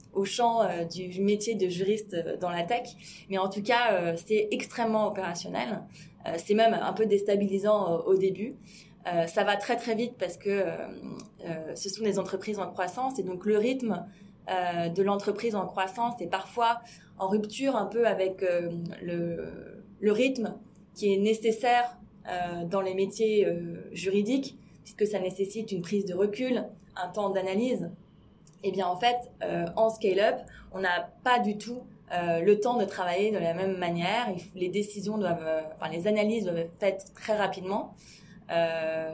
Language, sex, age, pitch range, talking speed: French, female, 20-39, 180-220 Hz, 175 wpm